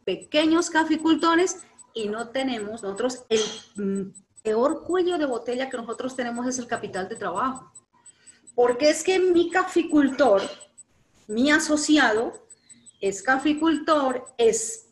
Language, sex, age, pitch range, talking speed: English, female, 40-59, 210-295 Hz, 115 wpm